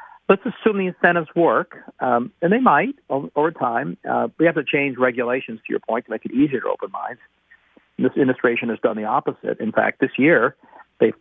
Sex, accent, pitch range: male, American, 115-160 Hz